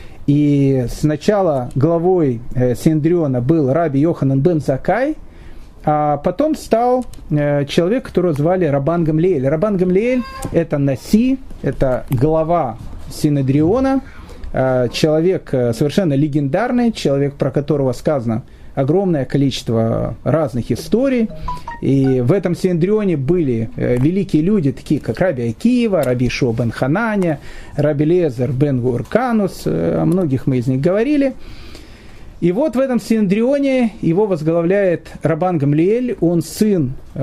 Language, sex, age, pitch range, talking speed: Russian, male, 30-49, 140-190 Hz, 110 wpm